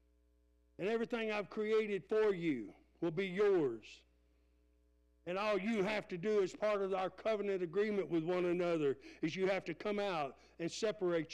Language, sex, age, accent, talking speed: English, male, 60-79, American, 170 wpm